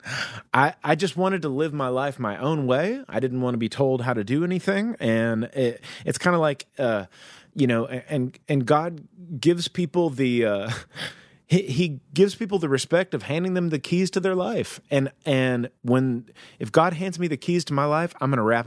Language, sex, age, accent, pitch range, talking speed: English, male, 30-49, American, 125-170 Hz, 215 wpm